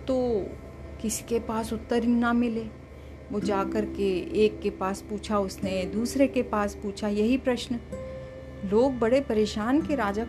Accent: native